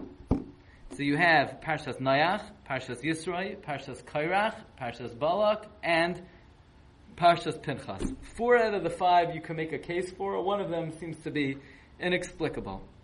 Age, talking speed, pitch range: 20-39, 145 wpm, 130-185 Hz